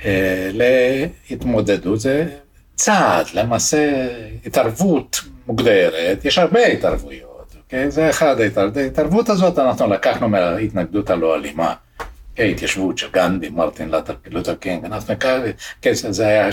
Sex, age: male, 60-79